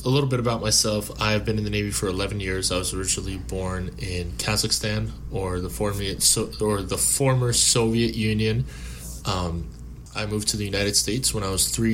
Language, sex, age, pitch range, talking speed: English, male, 20-39, 95-110 Hz, 180 wpm